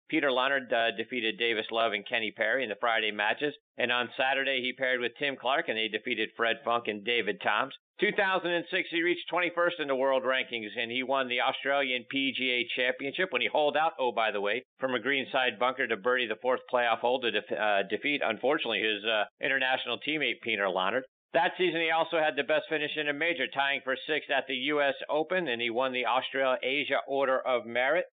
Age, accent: 50-69, American